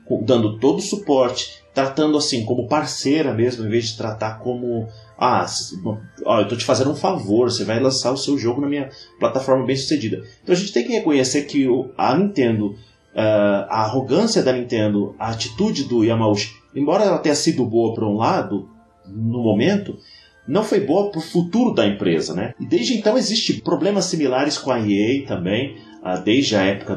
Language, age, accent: English, 30-49, Brazilian